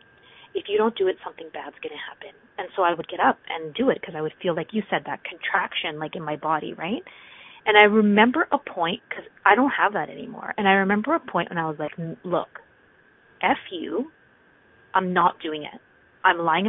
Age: 30-49